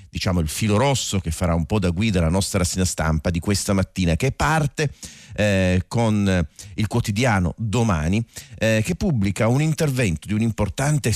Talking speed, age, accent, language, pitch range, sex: 170 wpm, 40-59, native, Italian, 85-110 Hz, male